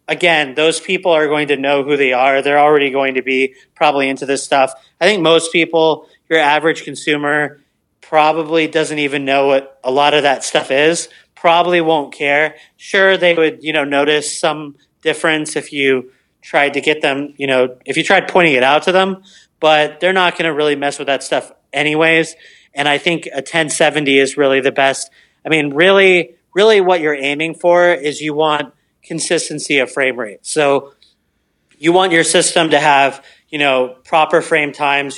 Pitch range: 135-160 Hz